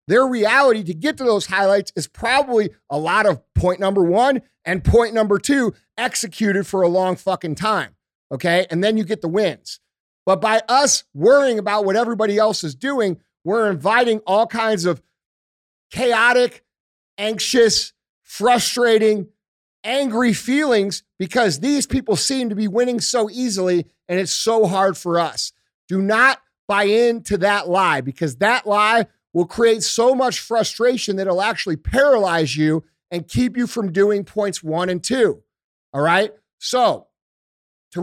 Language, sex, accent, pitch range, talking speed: English, male, American, 185-245 Hz, 155 wpm